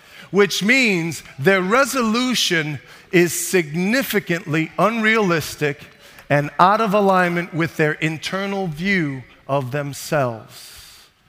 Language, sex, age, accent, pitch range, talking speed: English, male, 40-59, American, 150-200 Hz, 90 wpm